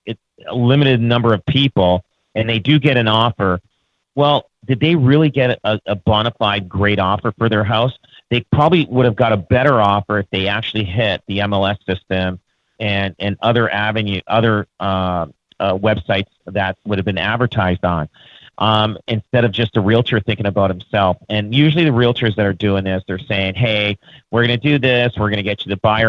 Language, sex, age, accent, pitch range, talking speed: English, male, 40-59, American, 100-120 Hz, 200 wpm